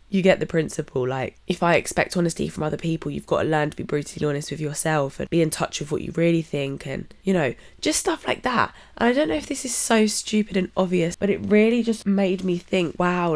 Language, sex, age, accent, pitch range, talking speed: English, female, 20-39, British, 150-200 Hz, 255 wpm